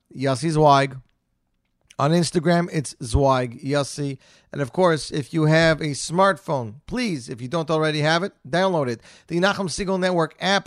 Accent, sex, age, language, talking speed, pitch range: American, male, 40-59, English, 165 wpm, 125-150 Hz